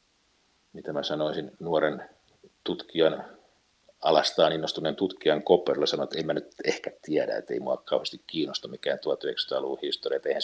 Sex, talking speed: male, 145 wpm